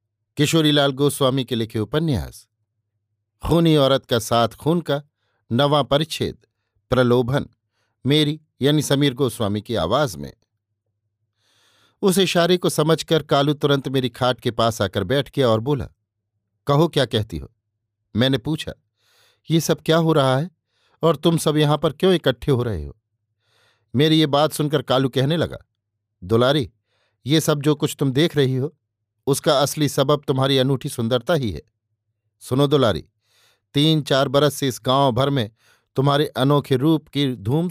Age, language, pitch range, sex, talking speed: 50-69, Hindi, 110-145 Hz, male, 155 wpm